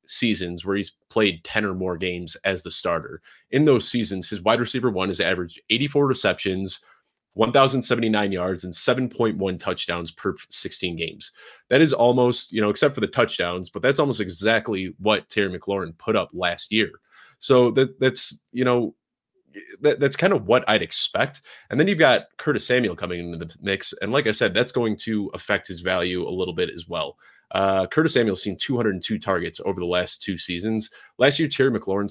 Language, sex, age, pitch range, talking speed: English, male, 30-49, 90-115 Hz, 185 wpm